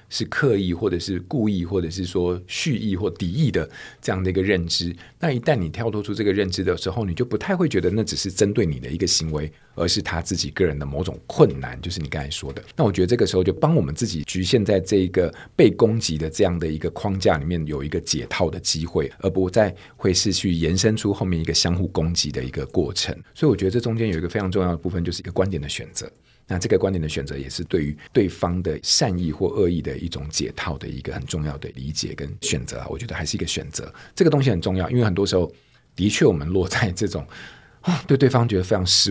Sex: male